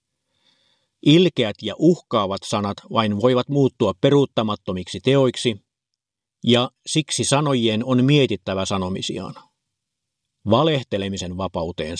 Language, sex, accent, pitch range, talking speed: Finnish, male, native, 105-130 Hz, 85 wpm